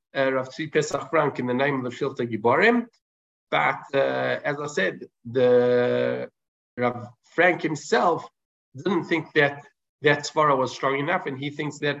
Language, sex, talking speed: English, male, 165 wpm